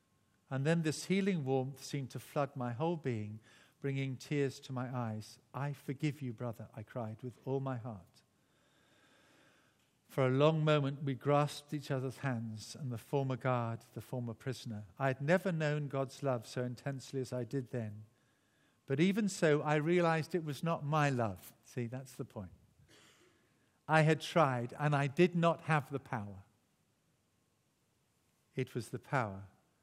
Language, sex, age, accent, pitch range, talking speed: English, male, 50-69, British, 120-150 Hz, 165 wpm